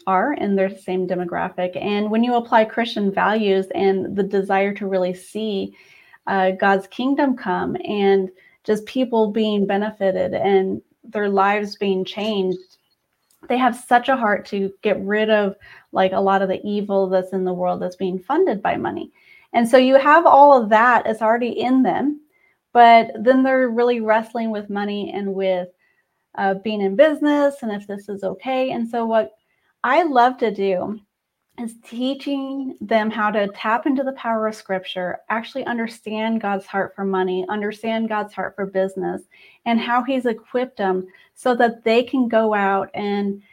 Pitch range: 195-250 Hz